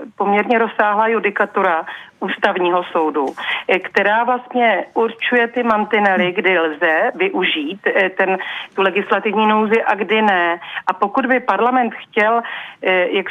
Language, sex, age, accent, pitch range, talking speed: Czech, female, 40-59, native, 185-225 Hz, 115 wpm